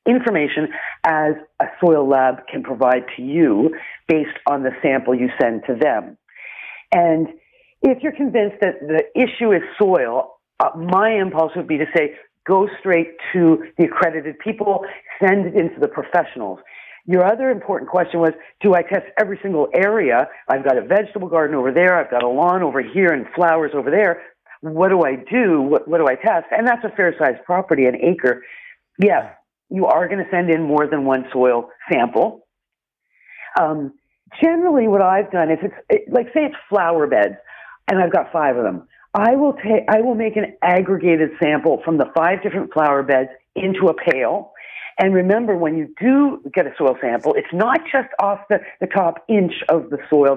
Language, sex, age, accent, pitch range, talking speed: English, female, 50-69, American, 155-215 Hz, 190 wpm